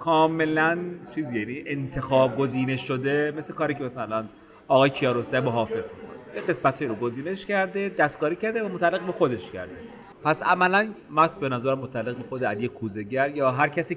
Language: Persian